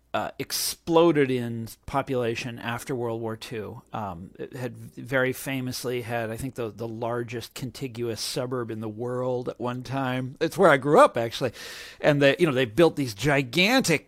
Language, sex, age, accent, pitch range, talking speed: English, male, 50-69, American, 115-140 Hz, 175 wpm